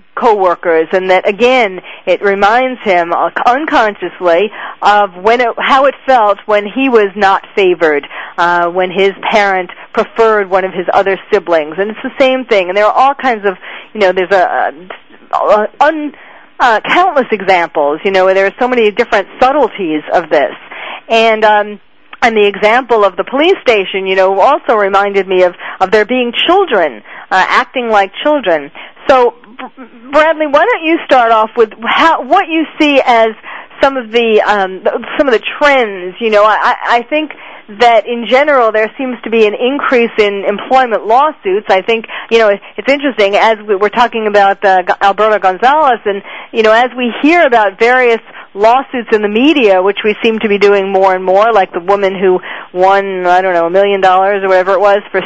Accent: American